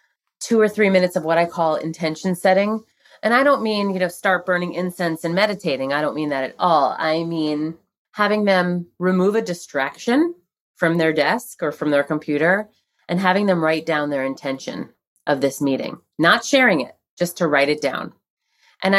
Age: 30-49